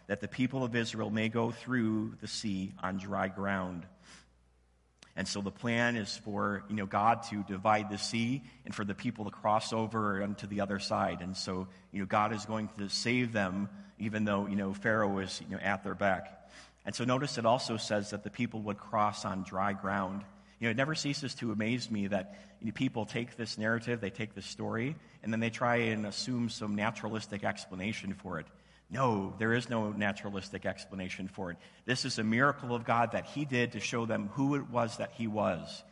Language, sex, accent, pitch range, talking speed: English, male, American, 100-115 Hz, 205 wpm